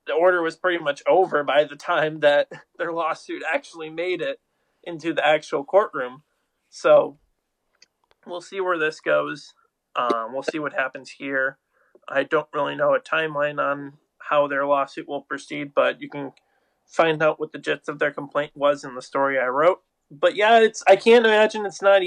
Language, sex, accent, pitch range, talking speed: English, male, American, 150-180 Hz, 185 wpm